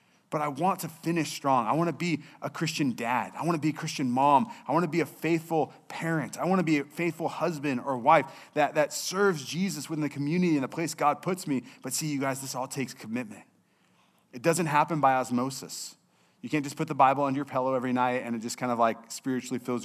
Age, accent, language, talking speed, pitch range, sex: 30-49, American, English, 245 wpm, 130-165 Hz, male